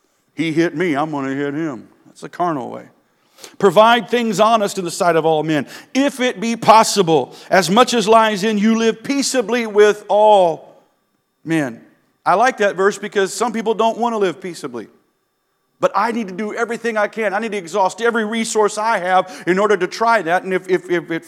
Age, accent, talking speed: 50-69, American, 210 wpm